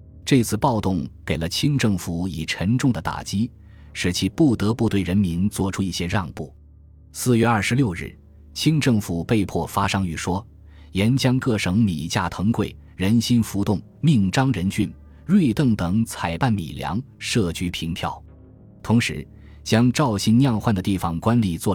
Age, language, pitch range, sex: 20-39, Chinese, 85-110 Hz, male